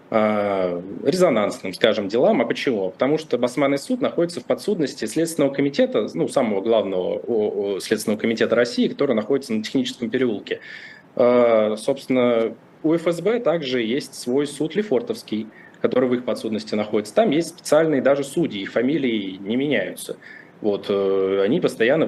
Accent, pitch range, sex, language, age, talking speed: native, 105-140 Hz, male, Russian, 20-39, 135 wpm